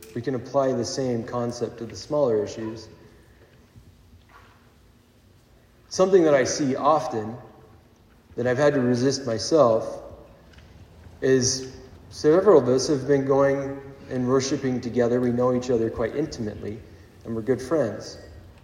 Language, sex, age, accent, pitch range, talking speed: English, male, 30-49, American, 105-140 Hz, 130 wpm